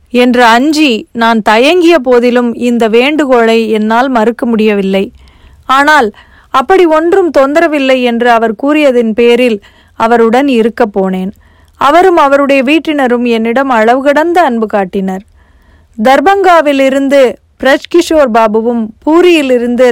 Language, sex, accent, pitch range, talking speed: Tamil, female, native, 230-295 Hz, 95 wpm